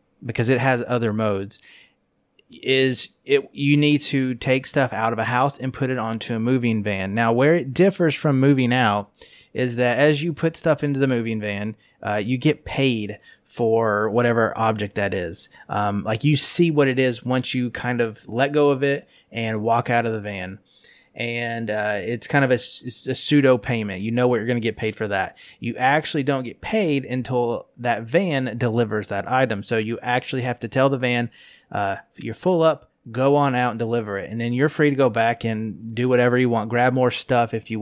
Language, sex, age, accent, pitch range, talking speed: English, male, 30-49, American, 110-135 Hz, 215 wpm